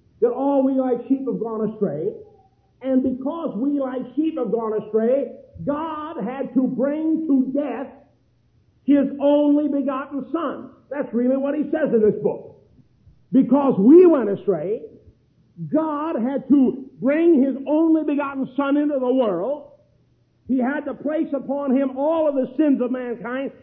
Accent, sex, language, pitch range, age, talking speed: American, male, English, 255-310 Hz, 50-69, 155 wpm